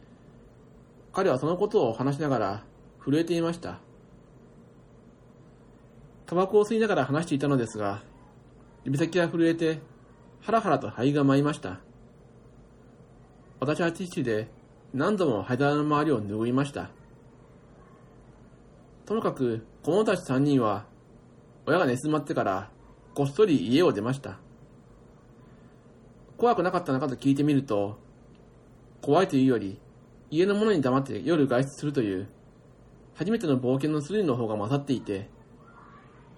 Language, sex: Japanese, male